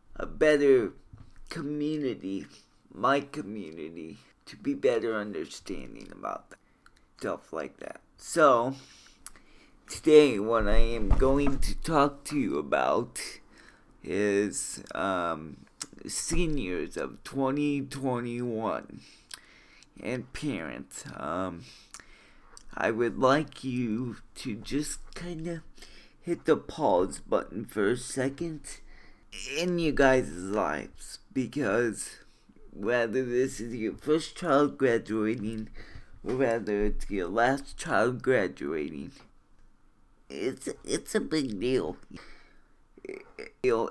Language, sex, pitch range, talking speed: English, male, 115-155 Hz, 95 wpm